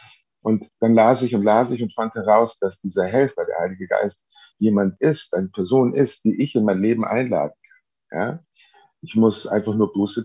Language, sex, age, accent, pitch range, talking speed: German, male, 50-69, German, 95-120 Hz, 200 wpm